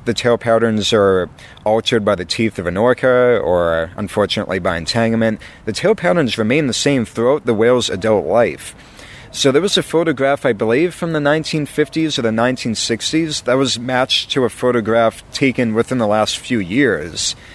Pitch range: 105-135 Hz